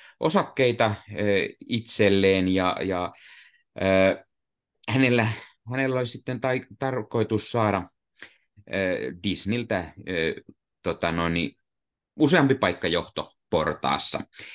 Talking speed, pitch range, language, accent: 85 wpm, 90-115 Hz, Finnish, native